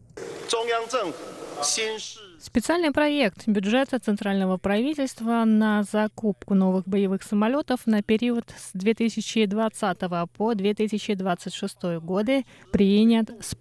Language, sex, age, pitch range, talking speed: Russian, female, 20-39, 195-235 Hz, 60 wpm